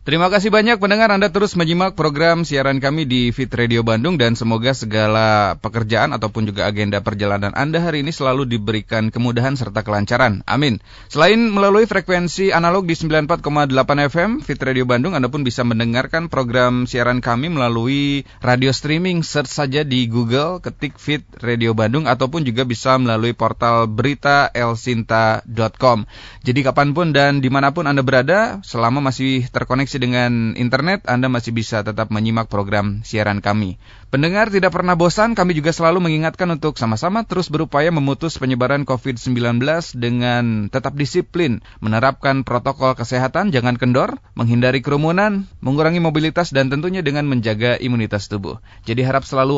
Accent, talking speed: native, 145 wpm